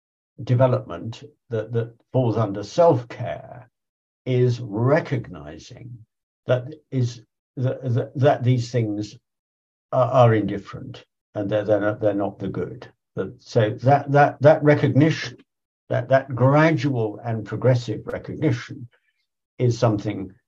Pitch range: 110-135 Hz